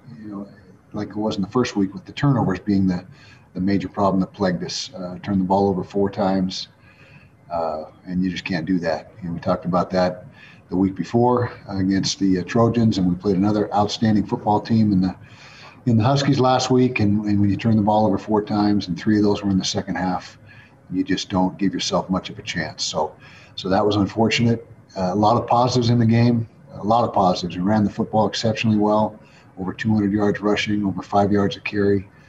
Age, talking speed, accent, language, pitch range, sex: 50-69, 220 wpm, American, English, 95-115 Hz, male